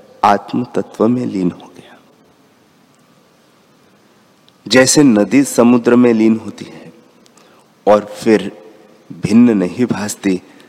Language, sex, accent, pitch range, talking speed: Hindi, male, native, 100-130 Hz, 100 wpm